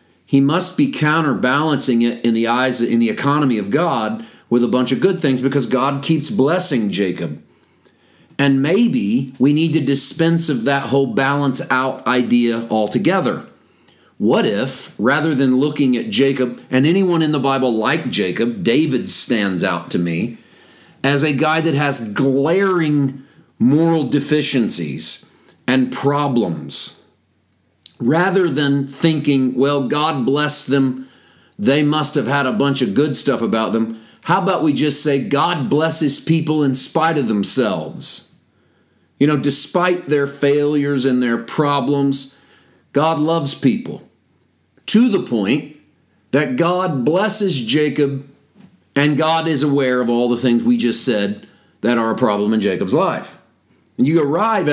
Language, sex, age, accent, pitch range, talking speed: English, male, 40-59, American, 125-150 Hz, 150 wpm